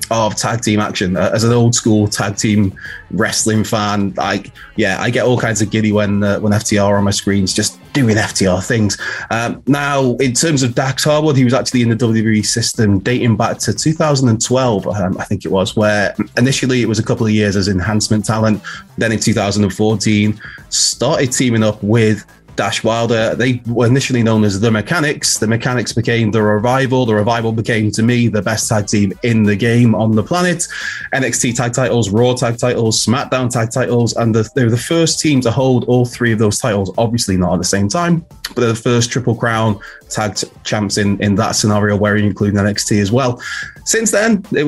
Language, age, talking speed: English, 20-39, 205 wpm